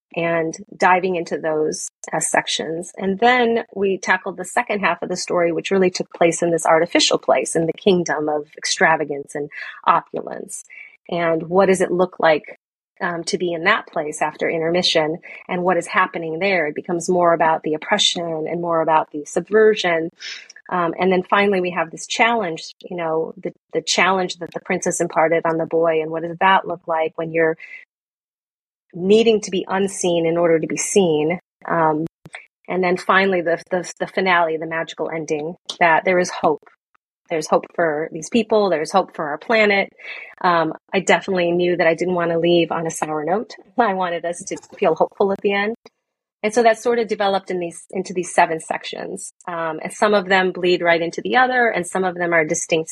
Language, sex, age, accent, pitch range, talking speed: English, female, 30-49, American, 165-195 Hz, 195 wpm